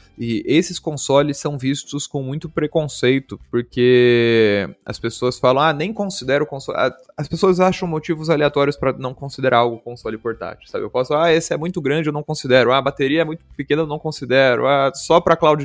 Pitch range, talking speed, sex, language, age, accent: 120-150 Hz, 200 wpm, male, Portuguese, 20-39, Brazilian